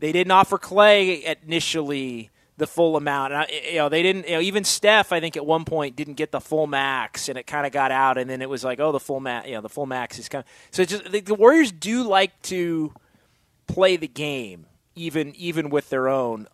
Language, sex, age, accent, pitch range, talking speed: English, male, 30-49, American, 145-185 Hz, 245 wpm